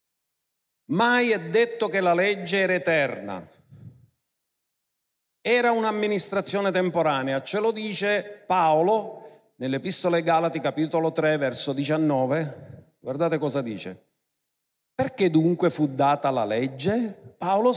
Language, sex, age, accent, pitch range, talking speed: Italian, male, 50-69, native, 140-200 Hz, 110 wpm